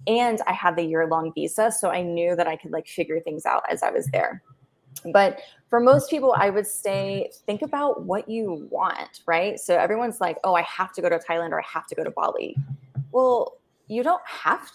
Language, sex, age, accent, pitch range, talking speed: English, female, 20-39, American, 170-220 Hz, 220 wpm